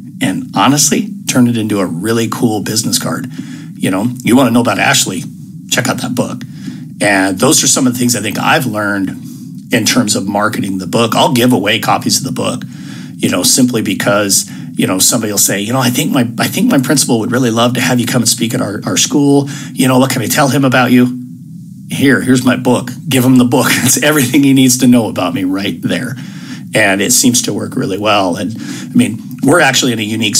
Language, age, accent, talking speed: English, 50-69, American, 235 wpm